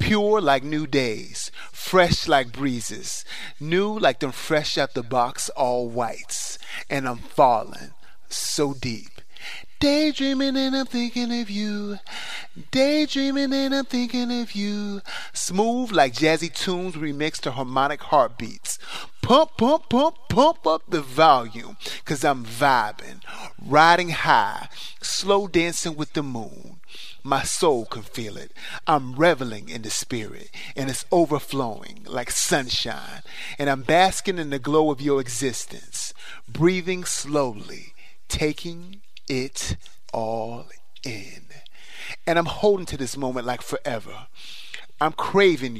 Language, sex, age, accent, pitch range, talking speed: English, male, 30-49, American, 135-200 Hz, 130 wpm